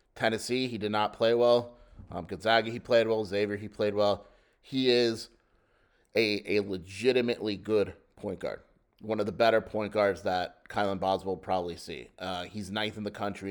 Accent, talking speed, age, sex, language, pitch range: American, 180 wpm, 30-49, male, English, 95-110 Hz